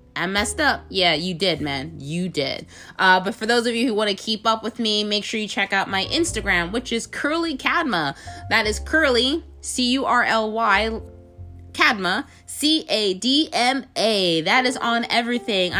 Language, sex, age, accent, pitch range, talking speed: English, female, 20-39, American, 185-255 Hz, 155 wpm